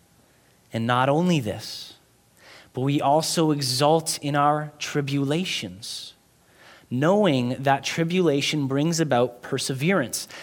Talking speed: 100 wpm